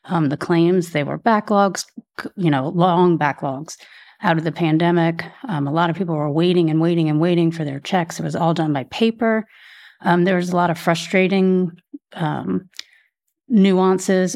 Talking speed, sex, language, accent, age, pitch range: 180 wpm, female, English, American, 30-49, 160-195 Hz